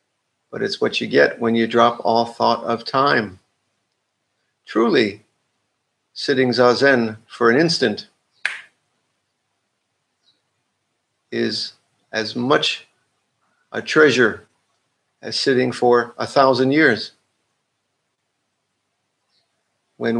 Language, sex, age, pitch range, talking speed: English, male, 50-69, 115-135 Hz, 90 wpm